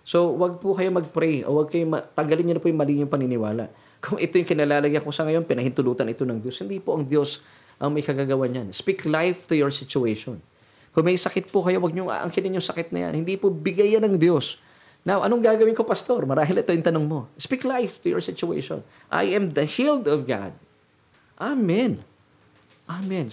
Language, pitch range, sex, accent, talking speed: Filipino, 125-170 Hz, male, native, 200 wpm